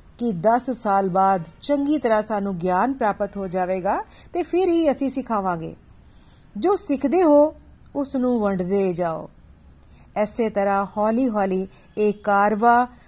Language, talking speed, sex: Punjabi, 135 wpm, female